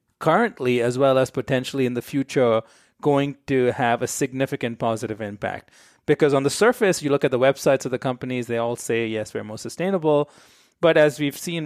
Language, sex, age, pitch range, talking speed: English, male, 30-49, 120-140 Hz, 195 wpm